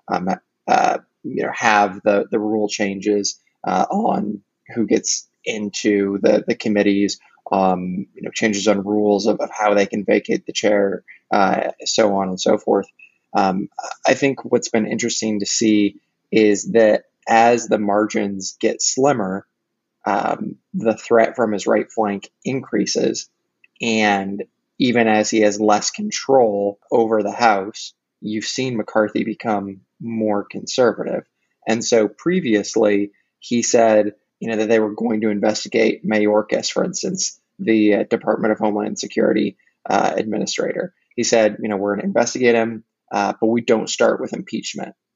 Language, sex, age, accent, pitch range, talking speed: English, male, 20-39, American, 100-115 Hz, 155 wpm